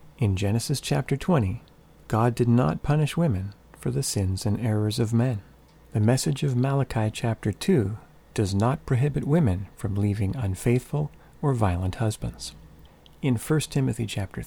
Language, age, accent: English, 40-59, American